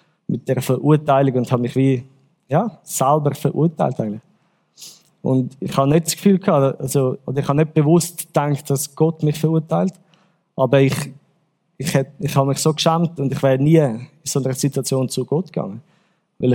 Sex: male